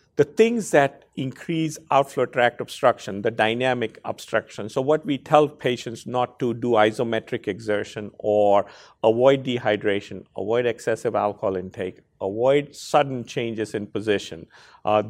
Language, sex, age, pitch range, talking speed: English, male, 50-69, 110-145 Hz, 130 wpm